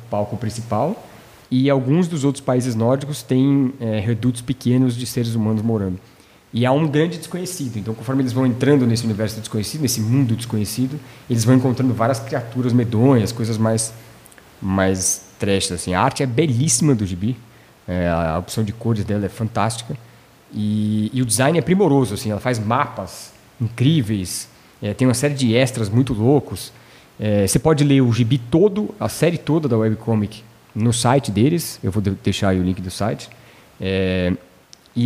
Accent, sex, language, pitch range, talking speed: Brazilian, male, Portuguese, 110-130 Hz, 175 wpm